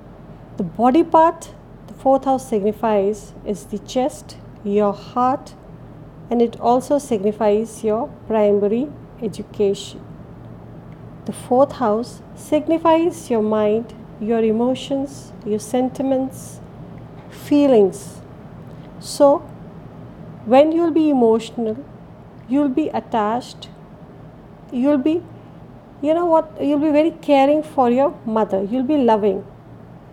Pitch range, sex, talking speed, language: 220-275 Hz, female, 105 wpm, English